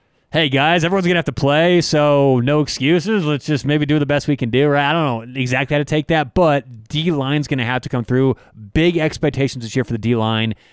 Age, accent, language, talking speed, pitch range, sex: 30-49, American, English, 245 wpm, 120-150 Hz, male